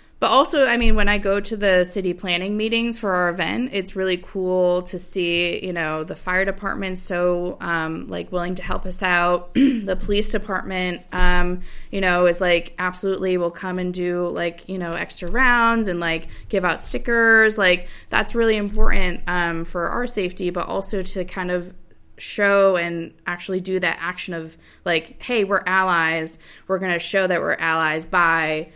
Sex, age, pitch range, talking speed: female, 20-39, 175-205 Hz, 185 wpm